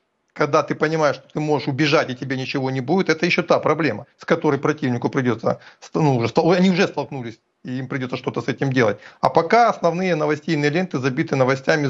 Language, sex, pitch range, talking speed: Russian, male, 140-165 Hz, 190 wpm